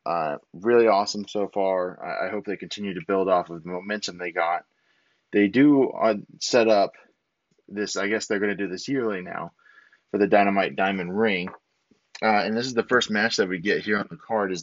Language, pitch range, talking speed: English, 95-115 Hz, 220 wpm